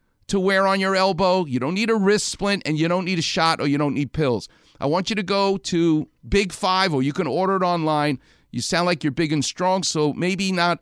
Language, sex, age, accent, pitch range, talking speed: English, male, 50-69, American, 145-200 Hz, 255 wpm